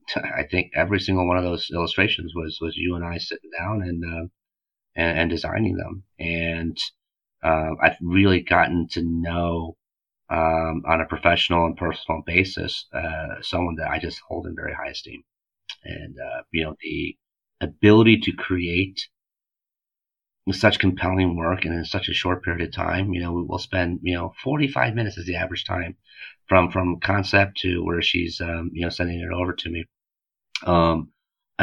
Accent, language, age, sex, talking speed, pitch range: American, English, 30-49, male, 175 wpm, 85-95 Hz